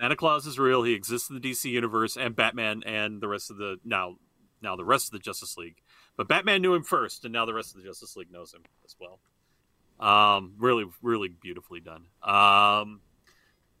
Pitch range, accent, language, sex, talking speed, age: 115-175 Hz, American, English, male, 210 wpm, 40-59